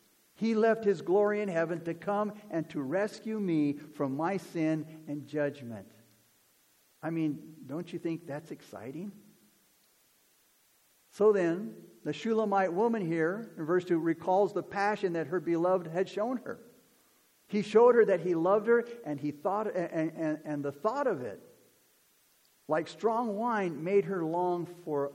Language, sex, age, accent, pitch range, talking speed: English, male, 50-69, American, 145-195 Hz, 155 wpm